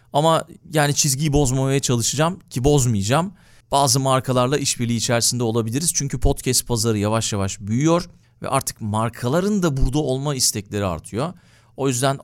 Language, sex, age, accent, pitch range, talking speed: Turkish, male, 40-59, native, 110-140 Hz, 135 wpm